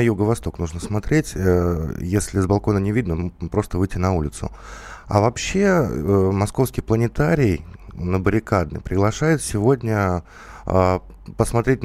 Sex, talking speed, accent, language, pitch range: male, 105 wpm, native, Russian, 90-110 Hz